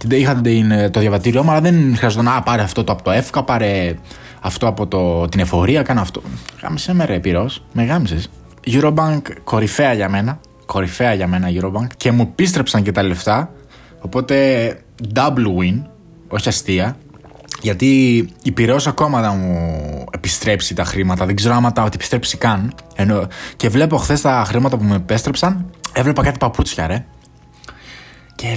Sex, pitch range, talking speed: male, 105-155 Hz, 155 wpm